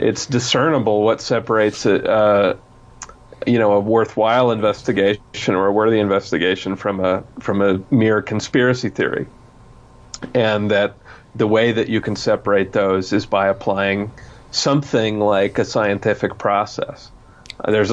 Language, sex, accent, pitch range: English, male, American, 100-120 Hz